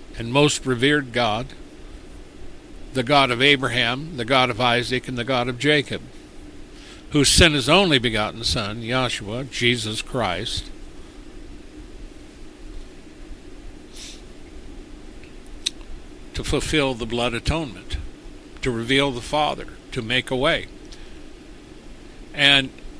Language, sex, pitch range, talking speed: English, male, 130-155 Hz, 105 wpm